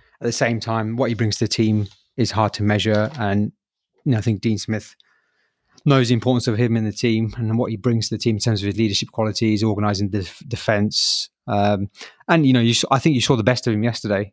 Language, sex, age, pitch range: English, male, 30-49, 105-125 Hz